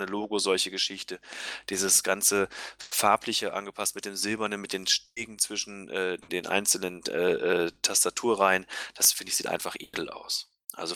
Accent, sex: German, male